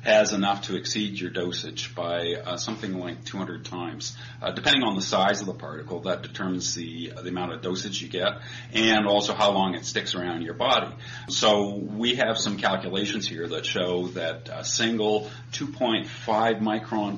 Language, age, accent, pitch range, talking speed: English, 40-59, American, 95-120 Hz, 180 wpm